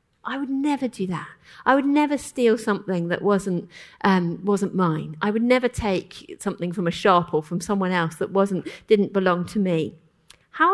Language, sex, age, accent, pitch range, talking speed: English, female, 40-59, British, 170-225 Hz, 190 wpm